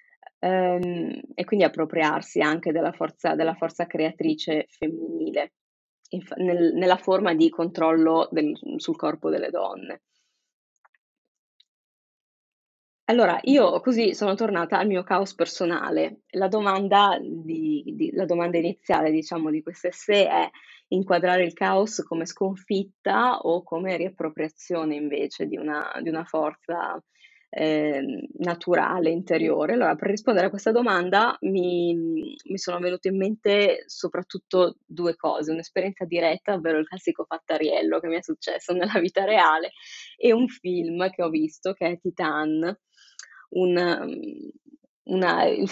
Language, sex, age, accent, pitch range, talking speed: Italian, female, 20-39, native, 165-205 Hz, 115 wpm